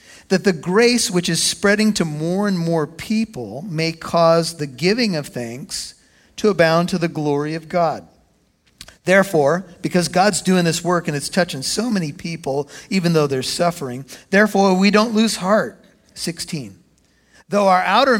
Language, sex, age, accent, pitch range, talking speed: English, male, 50-69, American, 150-190 Hz, 160 wpm